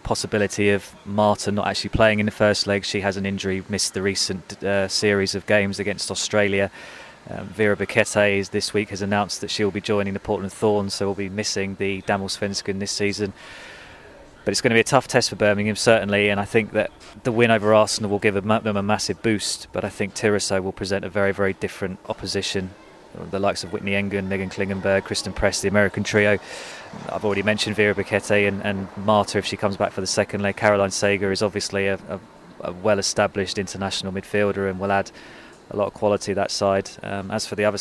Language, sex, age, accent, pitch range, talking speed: English, male, 20-39, British, 100-105 Hz, 220 wpm